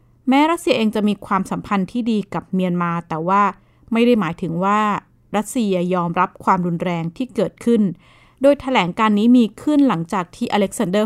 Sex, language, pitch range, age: female, Thai, 175-220 Hz, 20-39